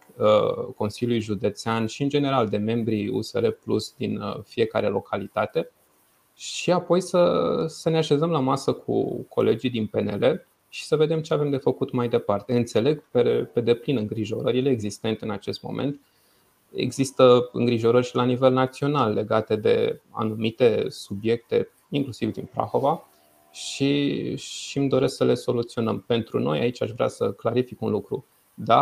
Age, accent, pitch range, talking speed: 20-39, native, 110-140 Hz, 150 wpm